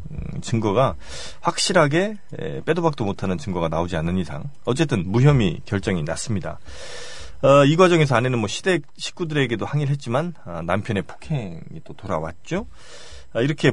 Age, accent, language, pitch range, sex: 30-49, native, Korean, 105-155 Hz, male